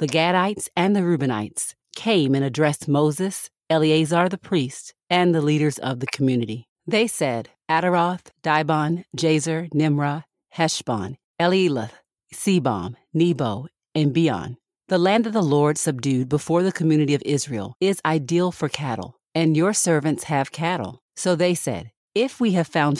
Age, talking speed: 40-59, 150 wpm